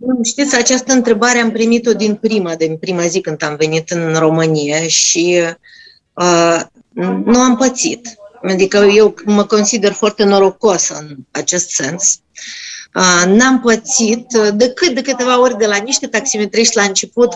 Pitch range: 200-255 Hz